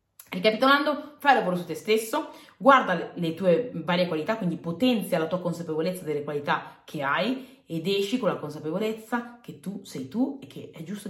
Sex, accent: female, native